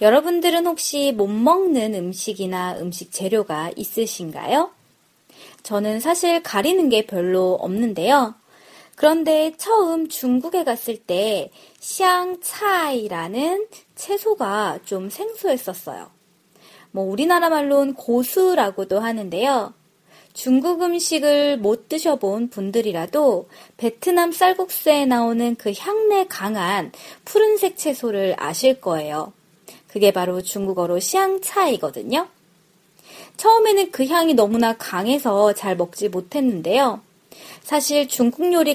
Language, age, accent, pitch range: Korean, 20-39, native, 200-325 Hz